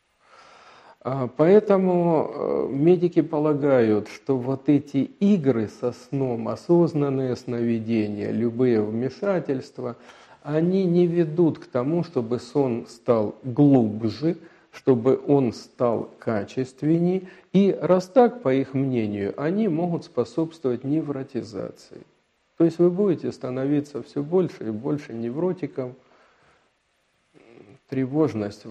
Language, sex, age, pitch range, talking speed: Russian, male, 50-69, 120-165 Hz, 100 wpm